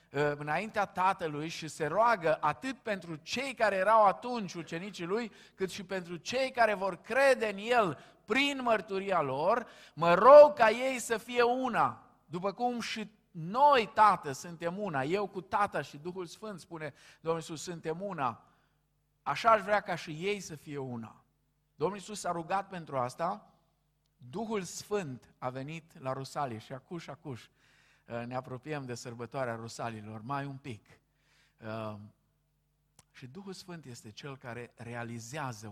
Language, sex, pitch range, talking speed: Romanian, male, 135-200 Hz, 150 wpm